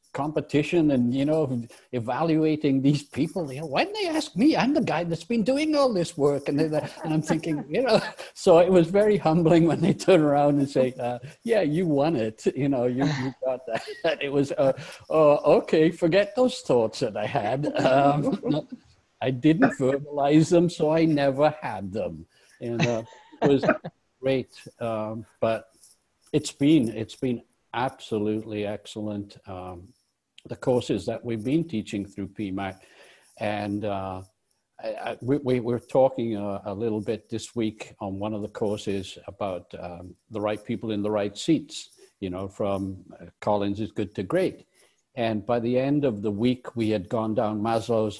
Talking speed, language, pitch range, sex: 175 wpm, English, 105-155 Hz, male